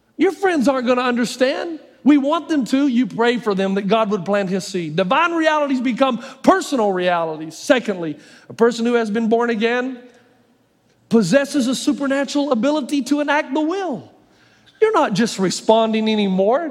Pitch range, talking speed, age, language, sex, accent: 220-305 Hz, 165 wpm, 50-69, English, male, American